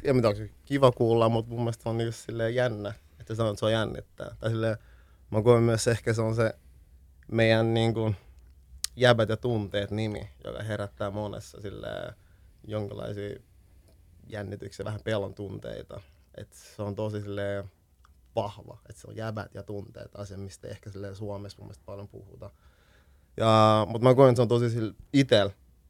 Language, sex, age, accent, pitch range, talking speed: Finnish, male, 30-49, native, 95-110 Hz, 165 wpm